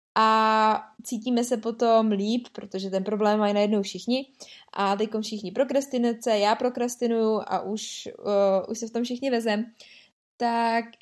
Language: Czech